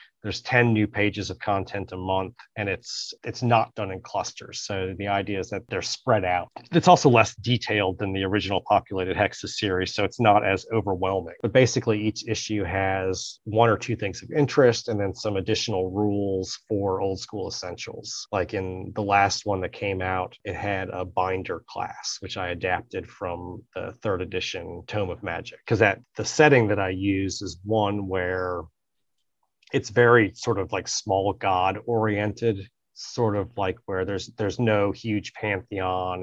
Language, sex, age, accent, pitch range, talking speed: English, male, 30-49, American, 95-110 Hz, 175 wpm